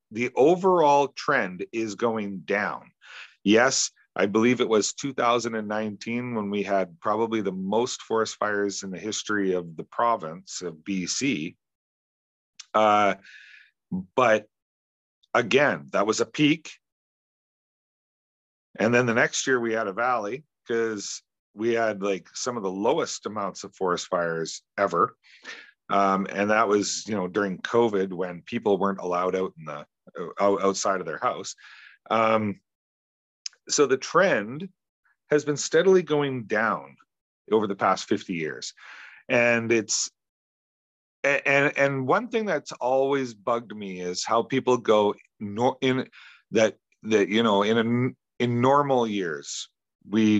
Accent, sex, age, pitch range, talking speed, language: American, male, 40-59, 95-120 Hz, 140 wpm, English